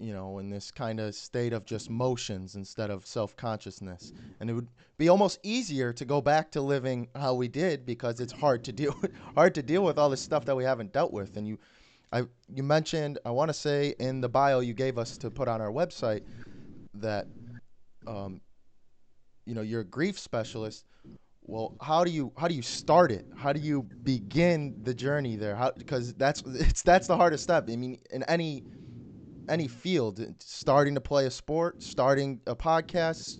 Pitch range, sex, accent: 115-145 Hz, male, American